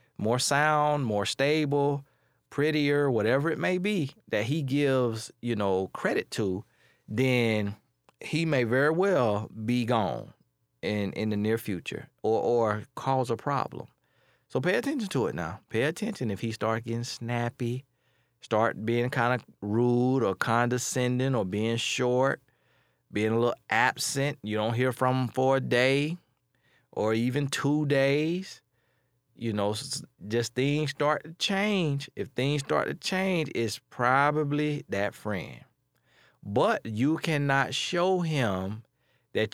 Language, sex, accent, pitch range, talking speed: English, male, American, 110-145 Hz, 145 wpm